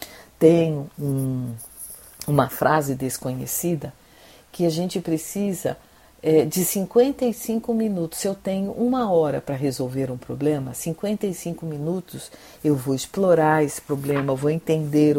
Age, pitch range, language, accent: 50-69, 140-190 Hz, Portuguese, Brazilian